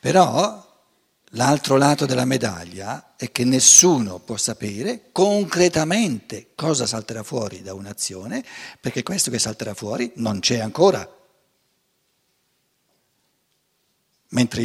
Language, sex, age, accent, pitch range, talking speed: Italian, male, 60-79, native, 125-200 Hz, 100 wpm